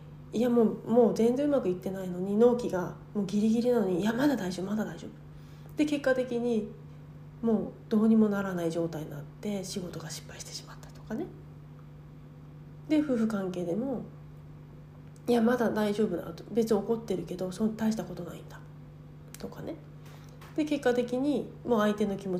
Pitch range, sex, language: 160-235 Hz, female, Japanese